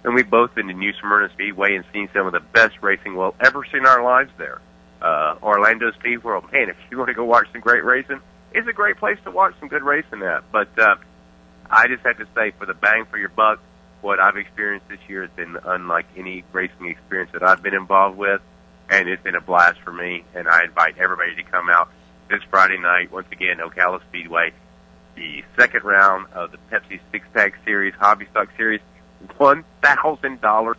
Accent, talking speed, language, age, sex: American, 215 wpm, English, 40-59, male